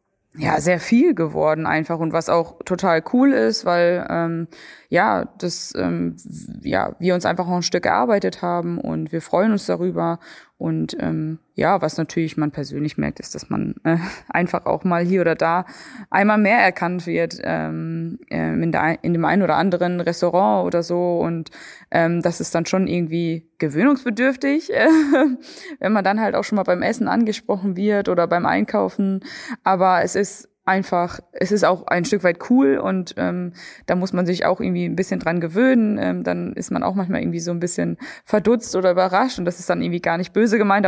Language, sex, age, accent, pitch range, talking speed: German, female, 20-39, German, 165-200 Hz, 190 wpm